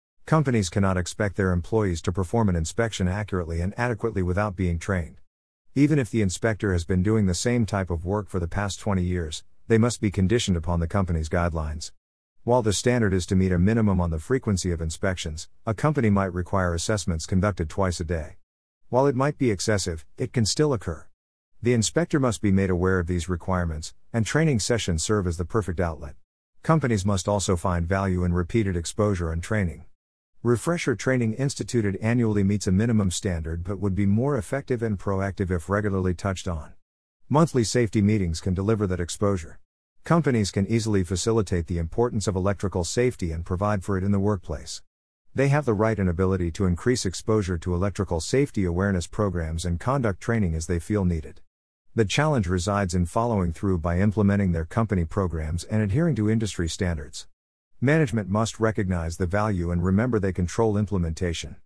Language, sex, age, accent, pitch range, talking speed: English, male, 50-69, American, 85-110 Hz, 180 wpm